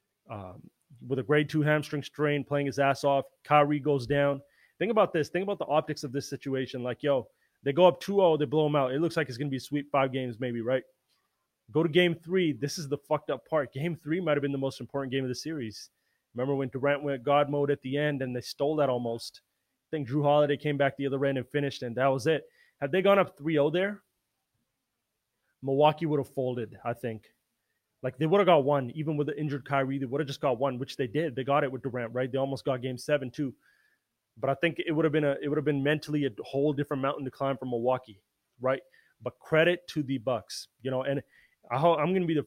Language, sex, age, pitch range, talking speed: English, male, 20-39, 130-155 Hz, 250 wpm